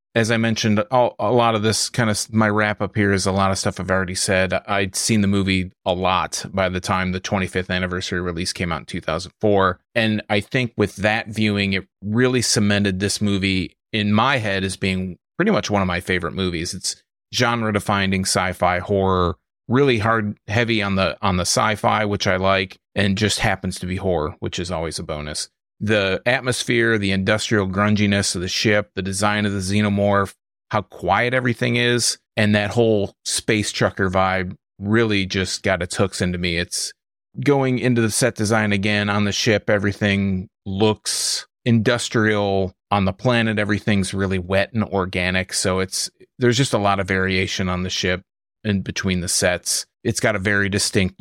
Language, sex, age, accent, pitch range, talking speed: English, male, 30-49, American, 95-110 Hz, 185 wpm